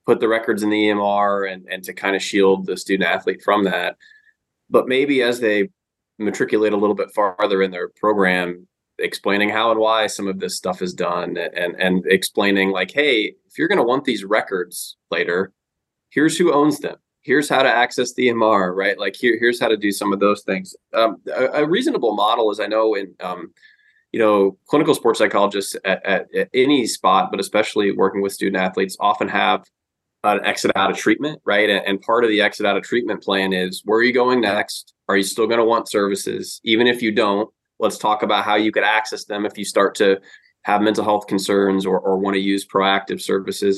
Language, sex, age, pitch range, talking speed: English, male, 20-39, 95-115 Hz, 215 wpm